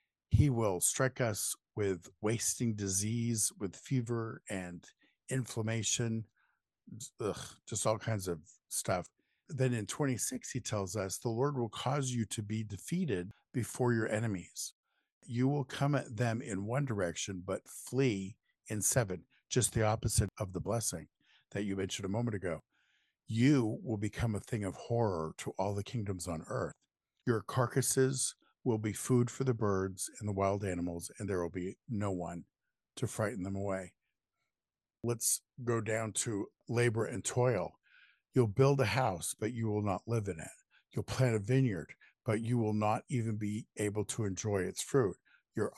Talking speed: 165 wpm